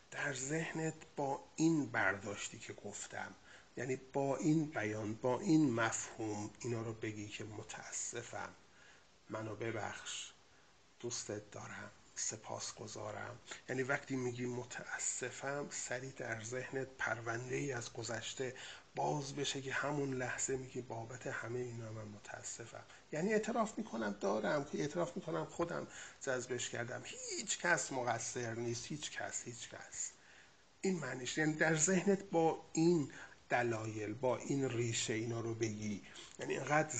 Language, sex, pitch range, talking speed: Persian, male, 115-140 Hz, 135 wpm